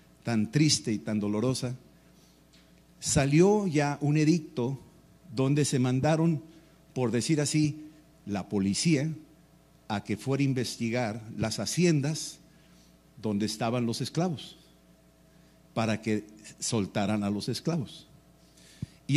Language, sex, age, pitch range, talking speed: Spanish, male, 50-69, 115-155 Hz, 110 wpm